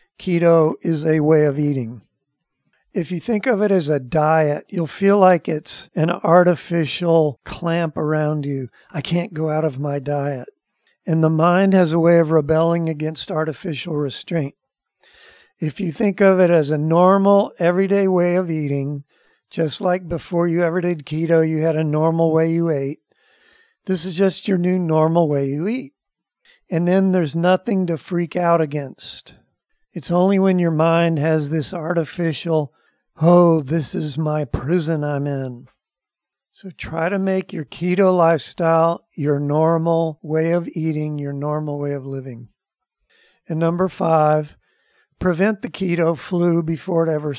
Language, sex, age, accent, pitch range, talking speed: English, male, 50-69, American, 155-185 Hz, 160 wpm